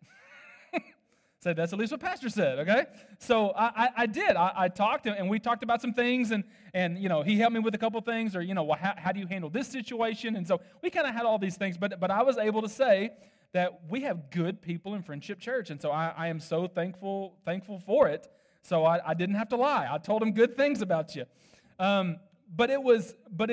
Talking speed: 245 wpm